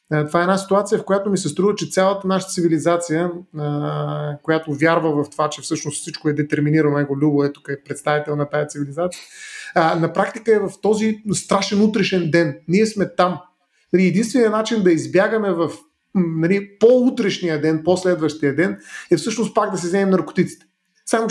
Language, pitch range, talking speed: Bulgarian, 155-200 Hz, 165 wpm